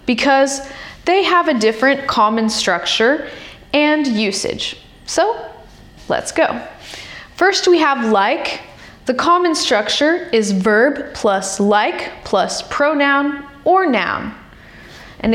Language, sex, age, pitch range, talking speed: Russian, female, 10-29, 215-310 Hz, 110 wpm